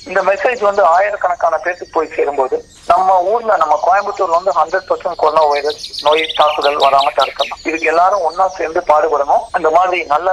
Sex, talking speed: male, 165 wpm